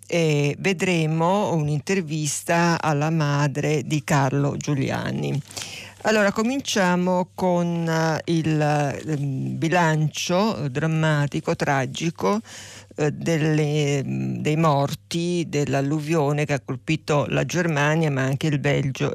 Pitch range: 145-170 Hz